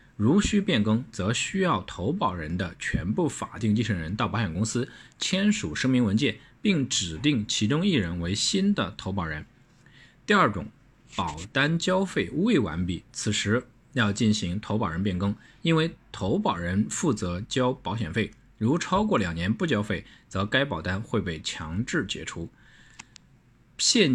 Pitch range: 95-130 Hz